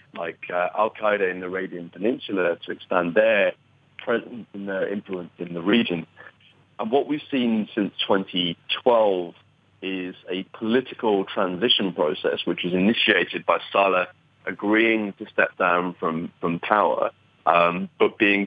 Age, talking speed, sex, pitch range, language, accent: 30-49, 140 wpm, male, 85-105 Hz, English, British